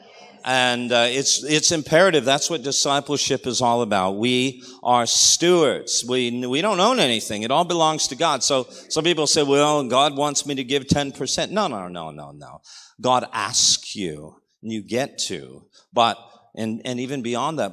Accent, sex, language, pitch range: American, male, English, 125-195 Hz